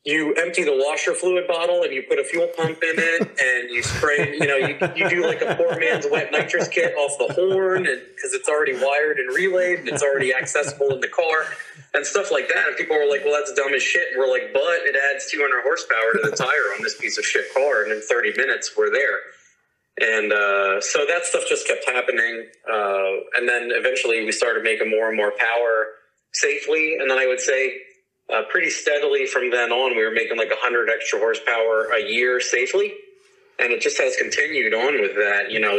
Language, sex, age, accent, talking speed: English, male, 30-49, American, 225 wpm